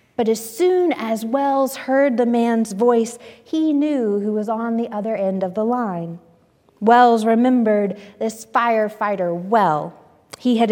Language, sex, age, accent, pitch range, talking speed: English, female, 30-49, American, 195-255 Hz, 150 wpm